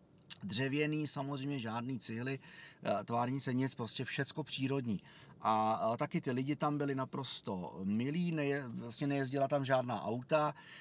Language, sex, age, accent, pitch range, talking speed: Czech, male, 30-49, native, 120-150 Hz, 130 wpm